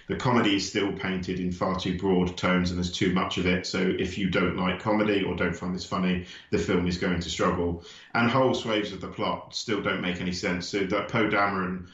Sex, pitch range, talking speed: male, 95-115 Hz, 240 wpm